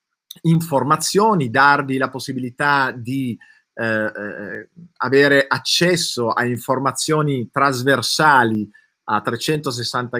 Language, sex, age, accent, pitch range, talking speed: Italian, male, 30-49, native, 115-140 Hz, 80 wpm